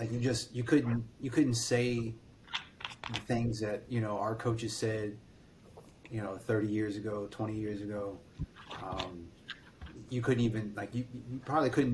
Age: 30-49